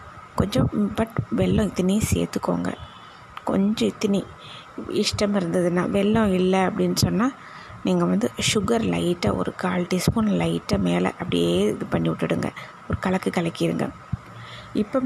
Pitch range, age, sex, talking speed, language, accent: 180-215 Hz, 20-39, female, 115 wpm, Tamil, native